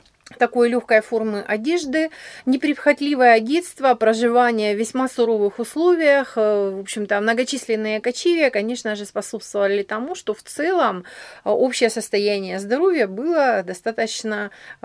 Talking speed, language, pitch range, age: 110 wpm, Russian, 210-280 Hz, 30-49